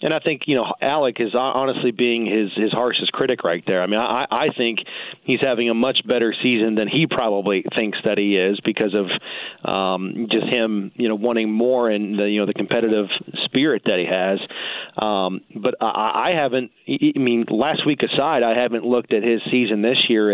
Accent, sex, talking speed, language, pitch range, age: American, male, 205 wpm, English, 110-125 Hz, 40-59